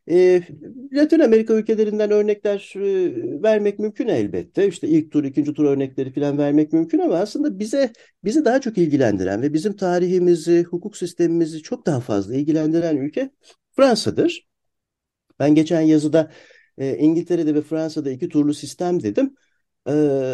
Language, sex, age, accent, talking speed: Turkish, male, 60-79, native, 135 wpm